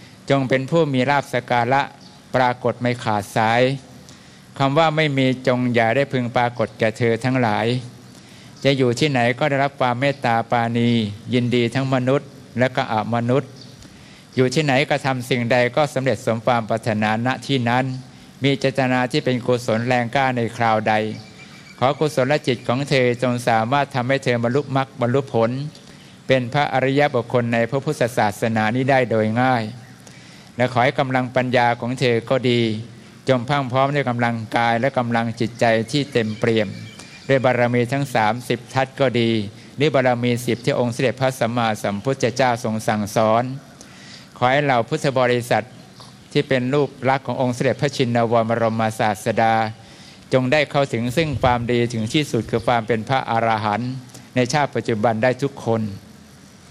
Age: 60-79